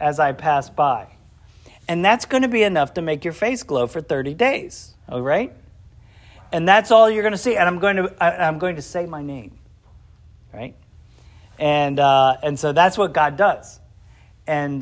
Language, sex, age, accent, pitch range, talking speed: English, male, 40-59, American, 150-205 Hz, 180 wpm